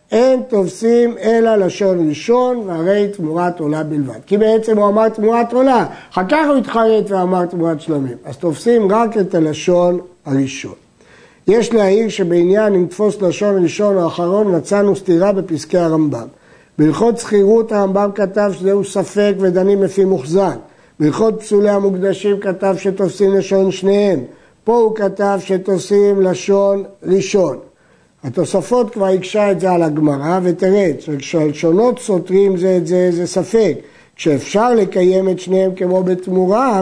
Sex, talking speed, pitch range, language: male, 135 wpm, 175-205 Hz, Hebrew